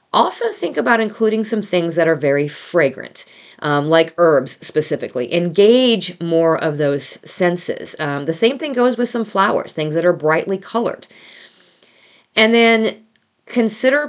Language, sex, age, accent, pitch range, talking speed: English, female, 40-59, American, 145-200 Hz, 150 wpm